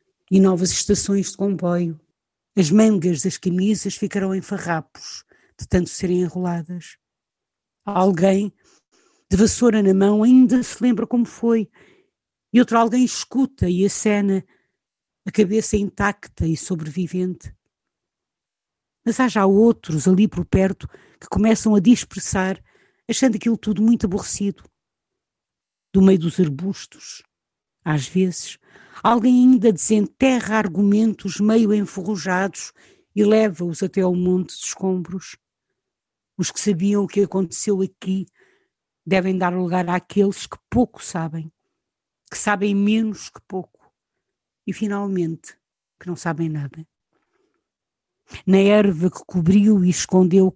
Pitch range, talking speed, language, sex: 180-215 Hz, 120 wpm, Portuguese, female